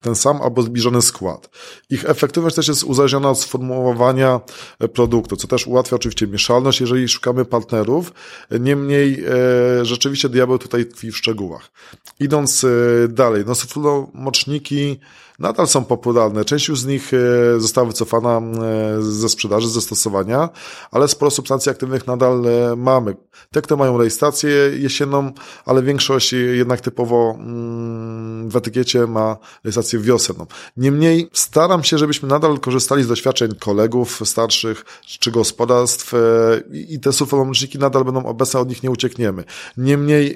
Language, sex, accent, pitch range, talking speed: Polish, male, native, 115-140 Hz, 135 wpm